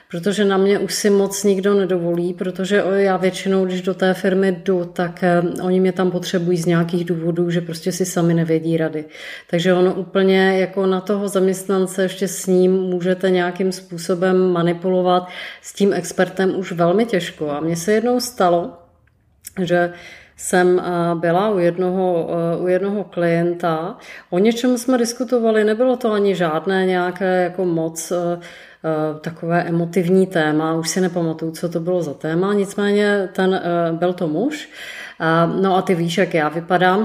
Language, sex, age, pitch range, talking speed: Czech, female, 30-49, 170-190 Hz, 155 wpm